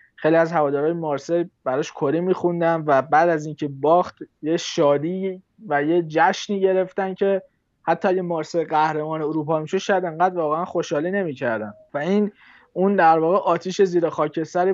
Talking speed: 155 wpm